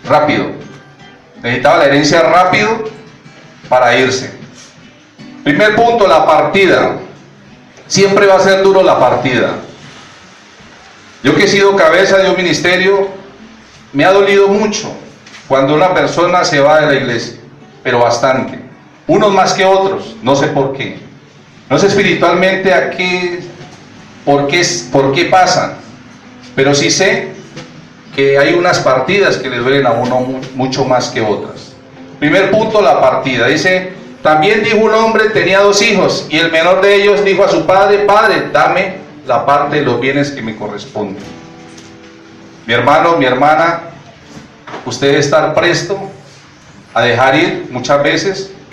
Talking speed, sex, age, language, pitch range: 145 wpm, male, 40-59, Spanish, 135-195 Hz